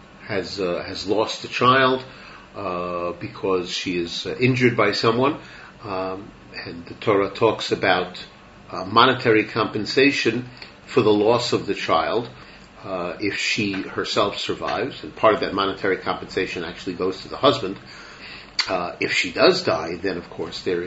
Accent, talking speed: American, 155 wpm